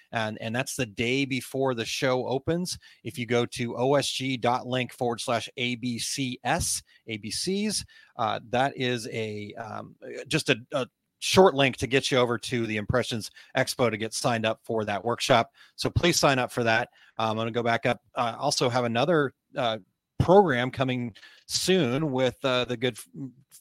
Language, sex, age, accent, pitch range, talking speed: English, male, 30-49, American, 110-135 Hz, 175 wpm